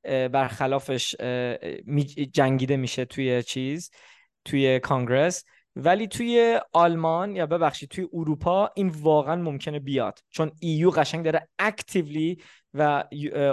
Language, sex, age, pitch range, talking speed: Persian, male, 20-39, 140-190 Hz, 110 wpm